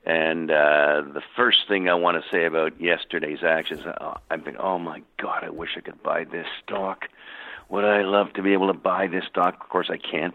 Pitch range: 80-95 Hz